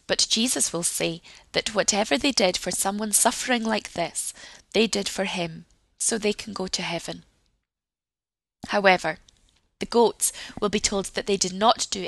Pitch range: 175-230 Hz